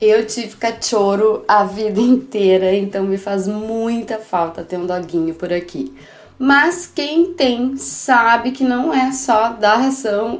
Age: 20-39